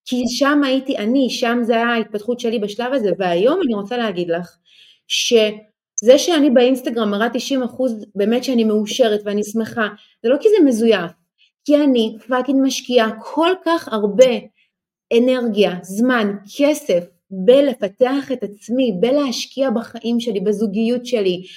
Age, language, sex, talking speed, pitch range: 30-49, Hebrew, female, 135 wpm, 210-265 Hz